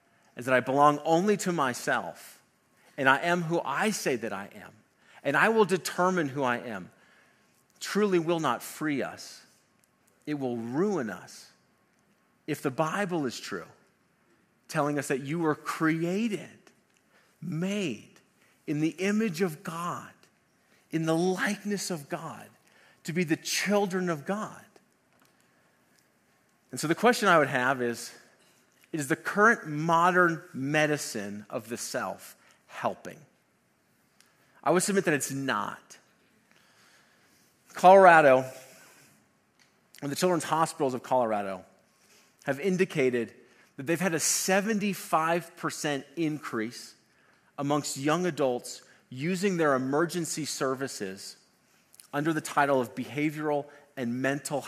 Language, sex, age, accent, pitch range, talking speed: English, male, 40-59, American, 135-175 Hz, 125 wpm